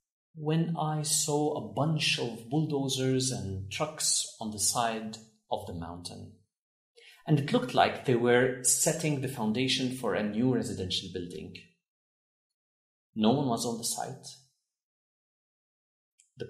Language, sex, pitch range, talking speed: Arabic, male, 100-130 Hz, 130 wpm